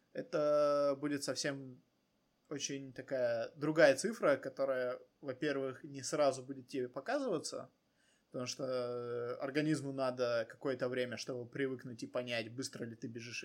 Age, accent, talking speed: 20-39, native, 125 wpm